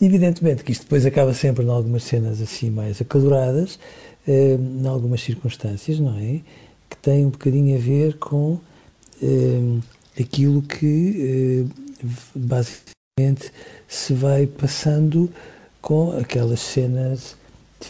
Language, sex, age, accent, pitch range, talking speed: Portuguese, male, 50-69, Portuguese, 125-150 Hz, 125 wpm